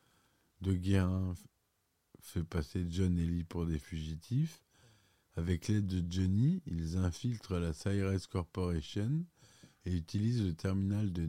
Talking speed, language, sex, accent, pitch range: 135 wpm, French, male, French, 85-110 Hz